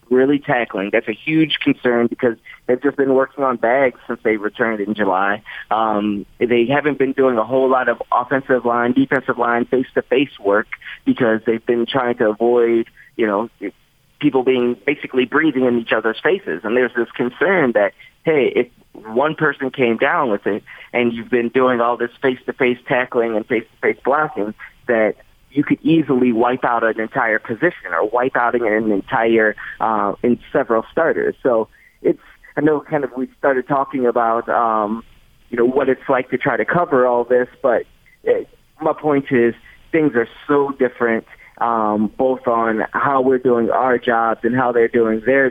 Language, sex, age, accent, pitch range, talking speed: English, male, 30-49, American, 115-135 Hz, 185 wpm